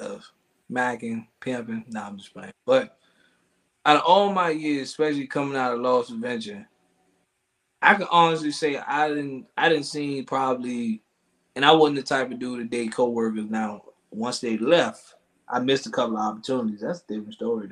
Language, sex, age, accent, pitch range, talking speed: English, male, 20-39, American, 130-205 Hz, 185 wpm